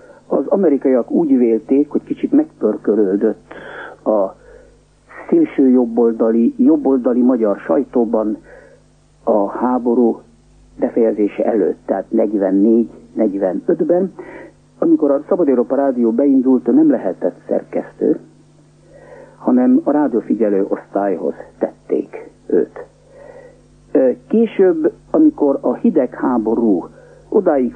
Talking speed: 85 wpm